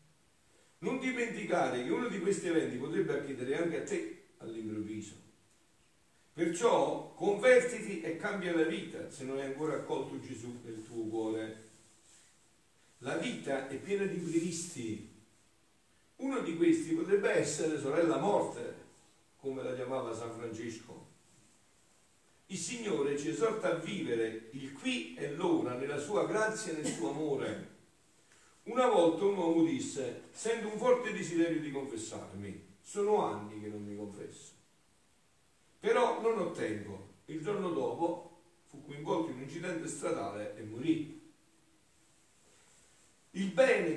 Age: 50-69